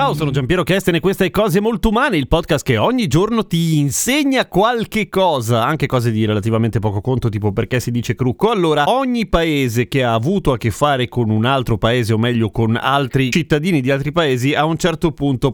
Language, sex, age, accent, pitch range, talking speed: Italian, male, 30-49, native, 115-165 Hz, 210 wpm